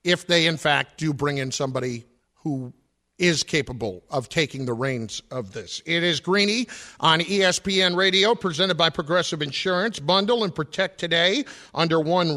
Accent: American